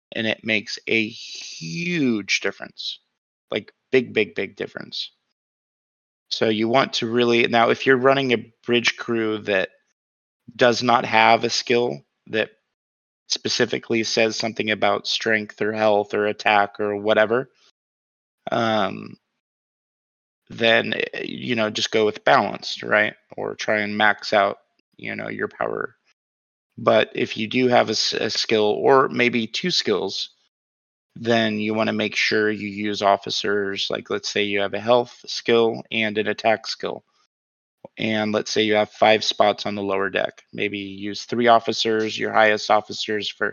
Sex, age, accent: male, 30-49, American